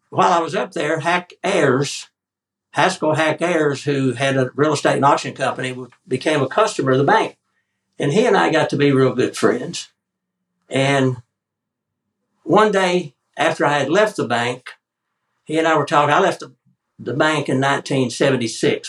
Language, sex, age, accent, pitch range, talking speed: English, male, 60-79, American, 125-155 Hz, 175 wpm